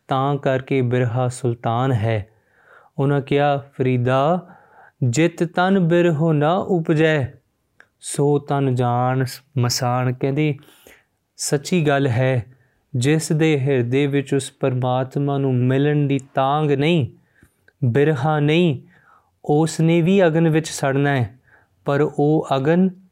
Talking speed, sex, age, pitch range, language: 115 wpm, male, 20-39, 130-150 Hz, Punjabi